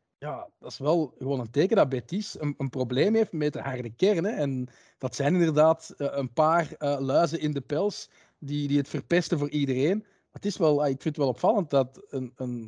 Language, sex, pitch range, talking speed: Dutch, male, 130-165 Hz, 200 wpm